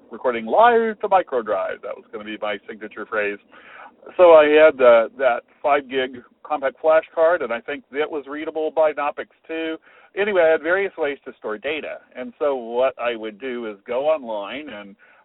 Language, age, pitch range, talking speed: English, 50-69, 120-155 Hz, 185 wpm